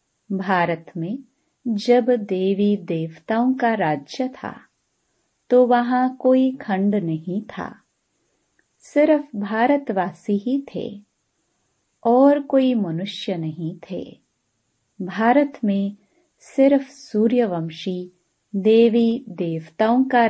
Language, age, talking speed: Hindi, 30-49, 90 wpm